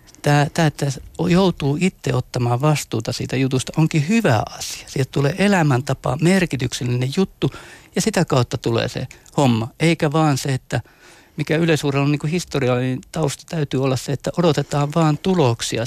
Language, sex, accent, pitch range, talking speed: Finnish, male, native, 125-155 Hz, 160 wpm